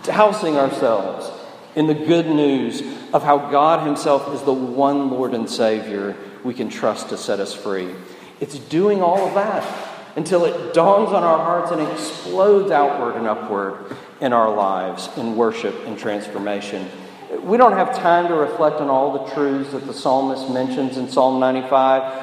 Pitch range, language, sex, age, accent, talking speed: 125-160 Hz, English, male, 50-69, American, 170 wpm